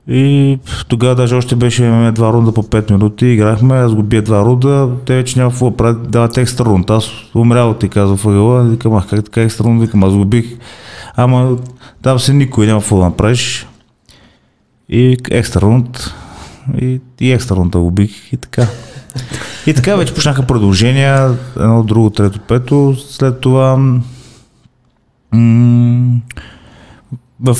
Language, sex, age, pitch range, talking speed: Bulgarian, male, 30-49, 100-125 Hz, 145 wpm